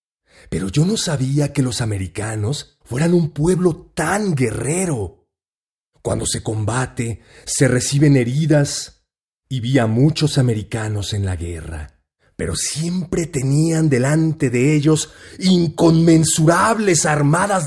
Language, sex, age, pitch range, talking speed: Spanish, male, 40-59, 140-170 Hz, 115 wpm